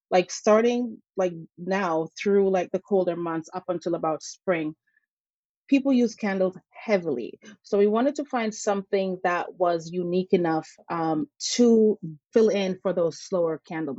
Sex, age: female, 30-49